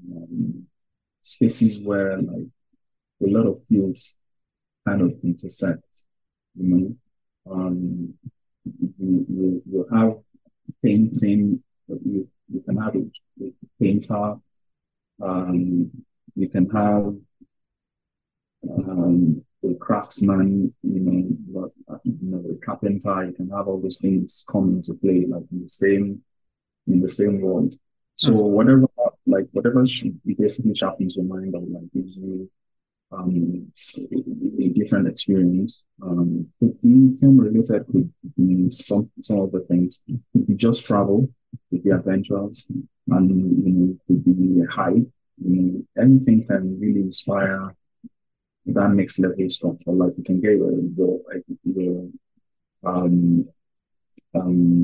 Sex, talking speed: male, 135 wpm